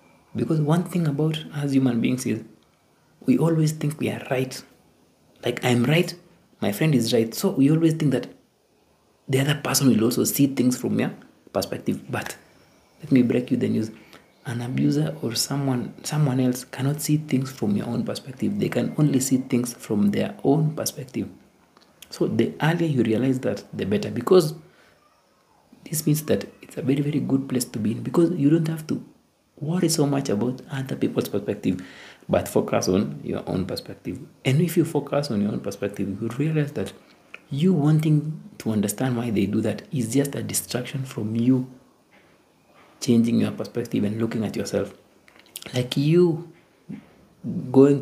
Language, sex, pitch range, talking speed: English, male, 115-150 Hz, 175 wpm